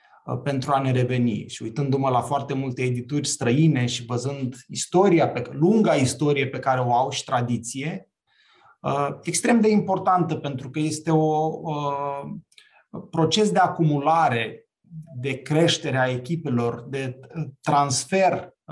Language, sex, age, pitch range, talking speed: Romanian, male, 30-49, 135-175 Hz, 120 wpm